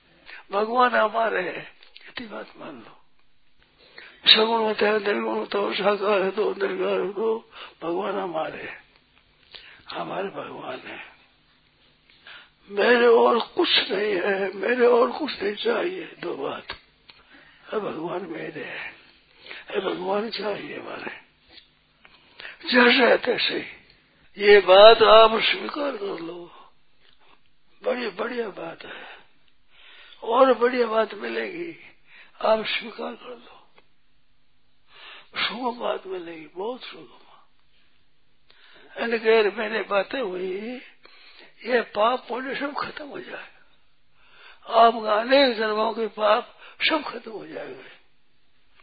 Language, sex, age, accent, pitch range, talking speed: Hindi, male, 60-79, native, 215-340 Hz, 110 wpm